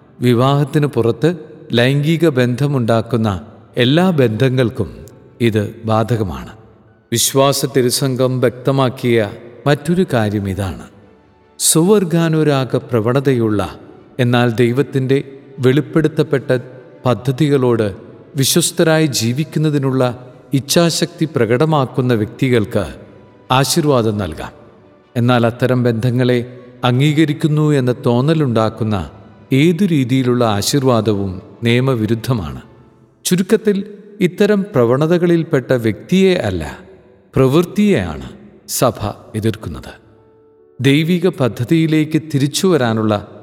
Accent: native